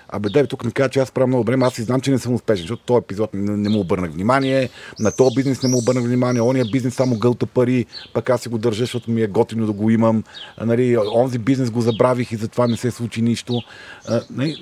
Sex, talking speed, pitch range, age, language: male, 250 wpm, 105-125 Hz, 40-59, Bulgarian